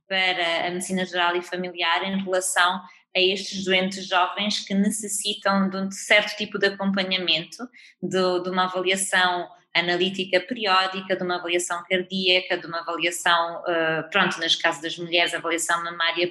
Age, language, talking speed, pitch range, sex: 20-39, Portuguese, 145 wpm, 175-195 Hz, female